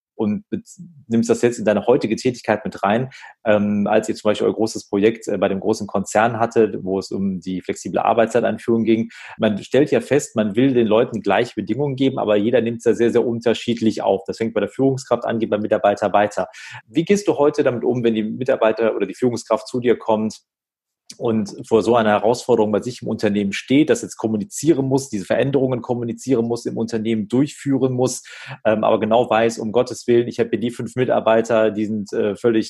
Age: 30-49